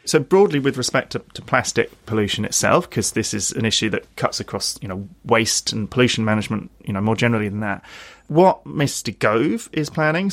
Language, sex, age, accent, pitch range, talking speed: English, male, 30-49, British, 105-120 Hz, 200 wpm